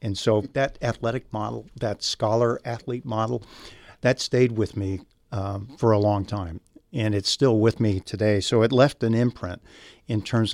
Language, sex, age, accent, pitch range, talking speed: English, male, 50-69, American, 100-115 Hz, 170 wpm